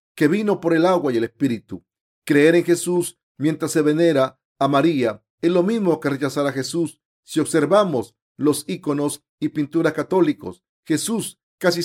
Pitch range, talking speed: 140-170 Hz, 160 wpm